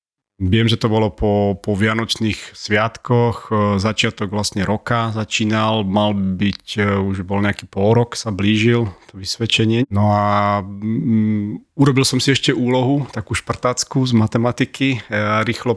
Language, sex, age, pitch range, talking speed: Slovak, male, 30-49, 105-125 Hz, 135 wpm